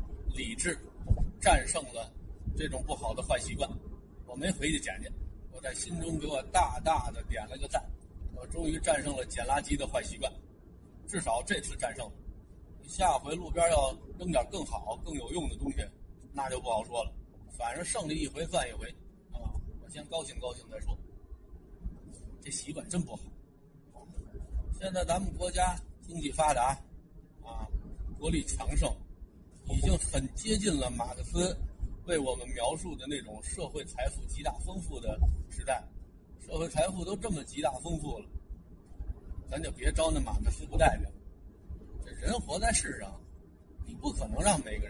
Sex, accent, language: male, native, Chinese